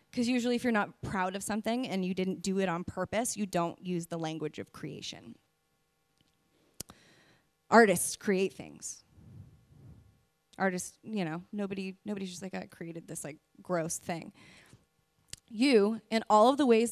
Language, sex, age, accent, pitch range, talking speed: English, female, 20-39, American, 175-215 Hz, 155 wpm